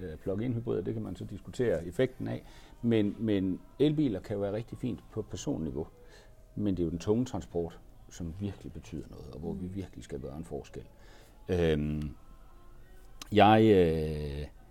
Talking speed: 160 wpm